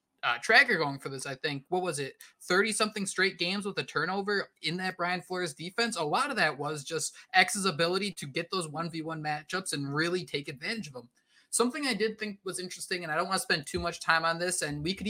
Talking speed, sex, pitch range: 240 wpm, male, 150-190 Hz